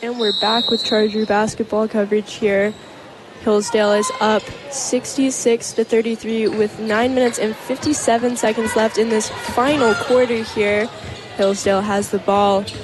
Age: 10-29